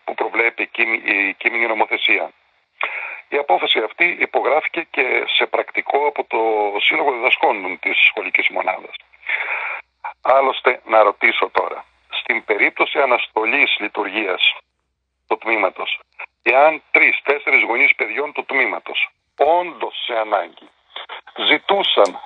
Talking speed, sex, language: 105 wpm, male, Greek